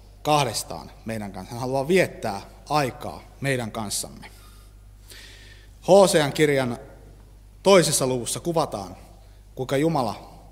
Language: Finnish